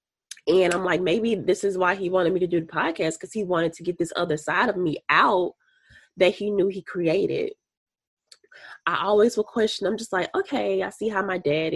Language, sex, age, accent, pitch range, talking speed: English, female, 20-39, American, 155-200 Hz, 220 wpm